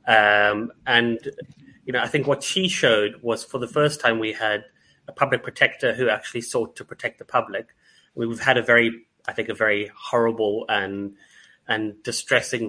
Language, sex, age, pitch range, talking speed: English, male, 30-49, 110-130 Hz, 190 wpm